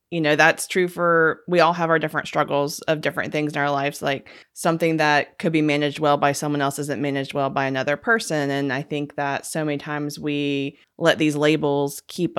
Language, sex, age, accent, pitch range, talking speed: English, female, 20-39, American, 150-165 Hz, 220 wpm